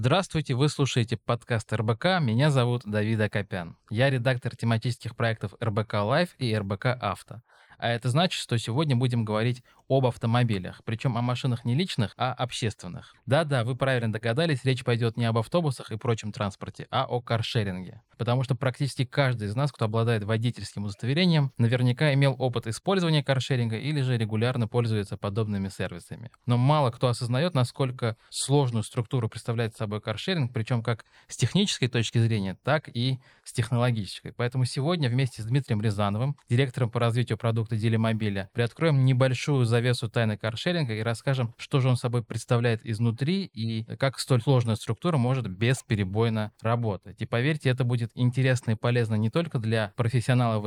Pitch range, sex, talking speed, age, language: 110-130 Hz, male, 160 wpm, 20-39, Russian